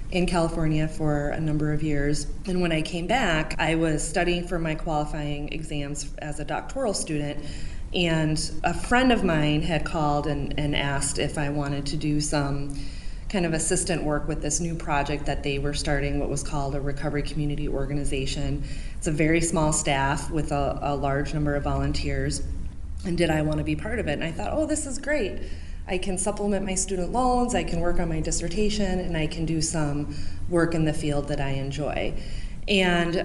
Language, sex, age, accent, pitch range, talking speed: English, female, 30-49, American, 140-165 Hz, 200 wpm